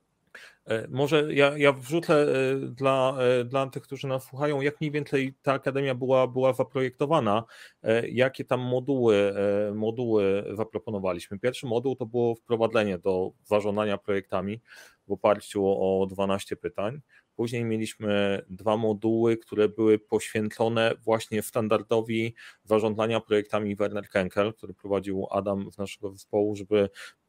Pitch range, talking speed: 105-125 Hz, 120 wpm